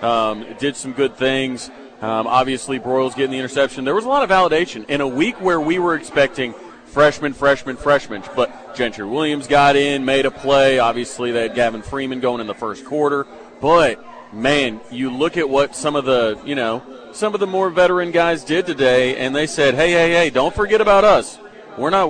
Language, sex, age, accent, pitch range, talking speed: English, male, 40-59, American, 130-170 Hz, 205 wpm